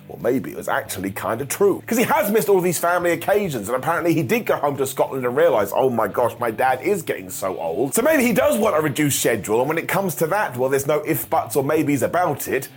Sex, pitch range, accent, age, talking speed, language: male, 150-195 Hz, British, 30-49, 275 wpm, English